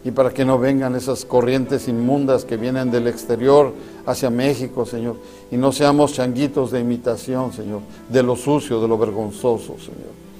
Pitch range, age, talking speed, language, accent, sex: 115-135 Hz, 50-69, 165 wpm, Spanish, Mexican, male